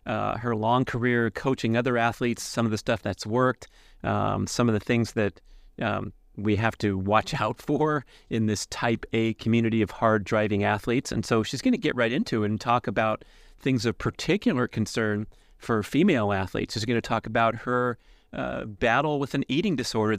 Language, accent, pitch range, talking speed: English, American, 105-125 Hz, 195 wpm